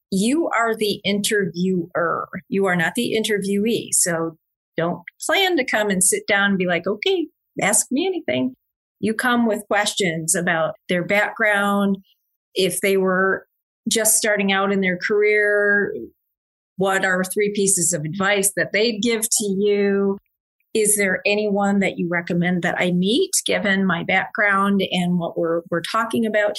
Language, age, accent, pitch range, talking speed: English, 40-59, American, 180-215 Hz, 155 wpm